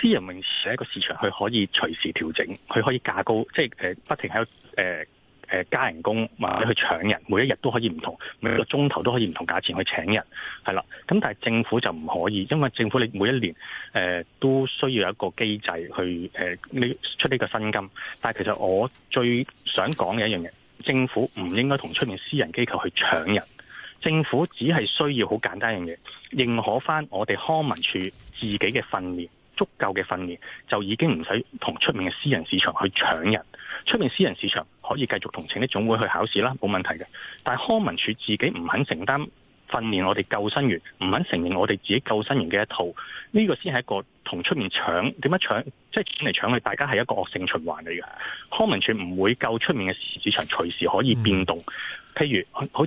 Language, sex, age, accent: Chinese, male, 20-39, native